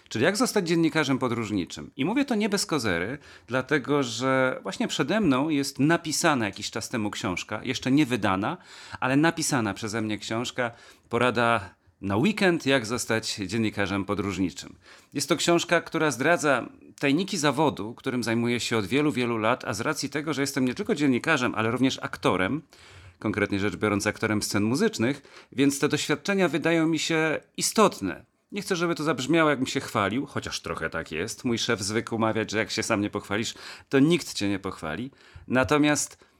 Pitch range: 105-150 Hz